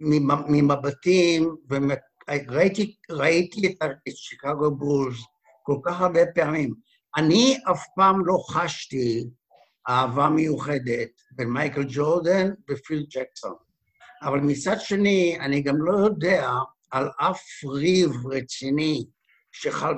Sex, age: male, 60-79